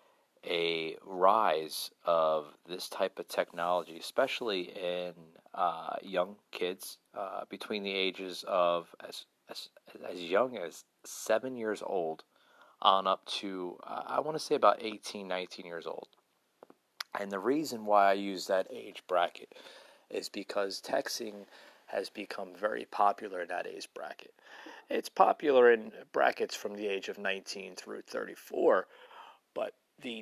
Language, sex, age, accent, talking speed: English, male, 30-49, American, 140 wpm